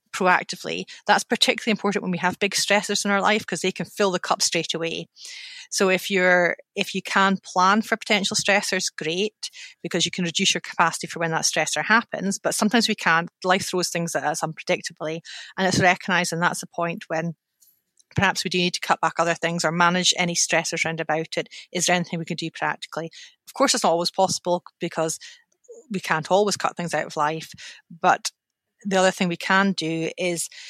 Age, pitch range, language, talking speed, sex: 30-49, 165-200 Hz, English, 205 wpm, female